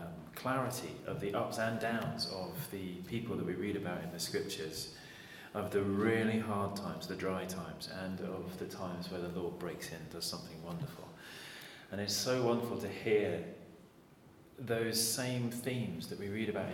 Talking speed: 180 wpm